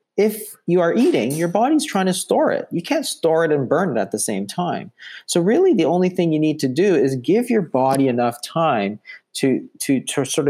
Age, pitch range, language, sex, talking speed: 30-49, 130-195 Hz, English, male, 230 wpm